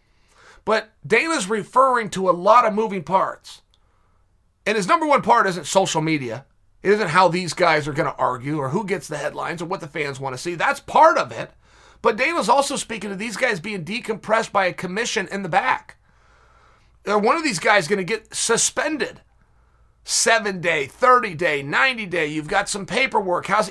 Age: 30-49